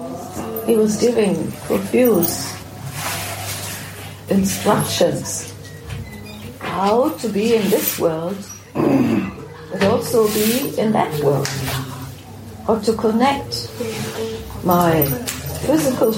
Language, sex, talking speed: English, female, 80 wpm